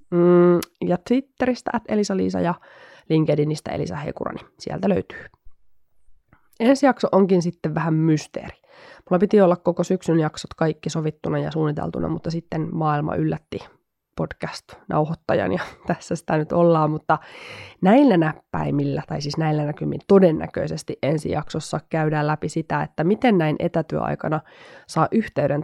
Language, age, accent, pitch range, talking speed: Finnish, 20-39, native, 155-185 Hz, 130 wpm